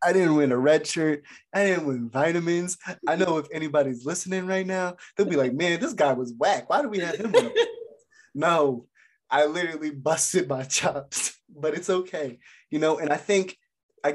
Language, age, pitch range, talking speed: English, 20-39, 120-155 Hz, 190 wpm